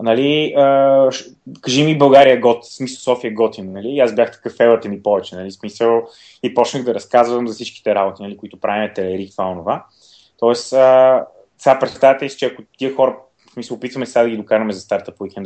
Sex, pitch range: male, 105-140 Hz